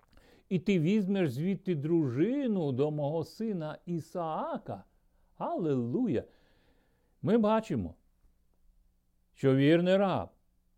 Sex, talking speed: male, 85 wpm